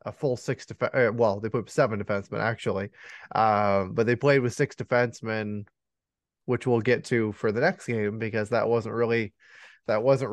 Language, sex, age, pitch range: English, male, 20-39, 105-125 Hz